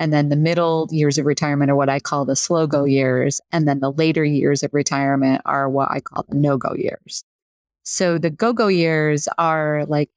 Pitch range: 145-170 Hz